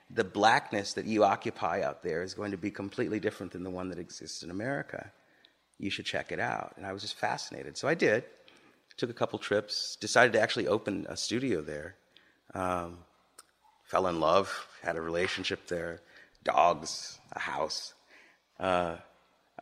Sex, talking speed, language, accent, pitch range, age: male, 170 wpm, English, American, 85-105 Hz, 30-49